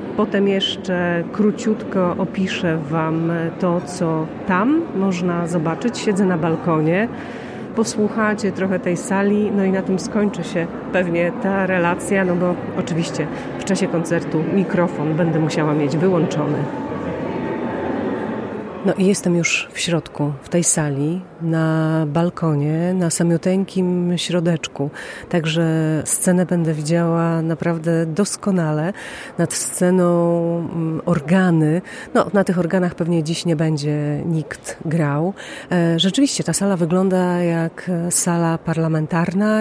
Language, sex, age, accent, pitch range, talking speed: Polish, female, 30-49, native, 165-195 Hz, 115 wpm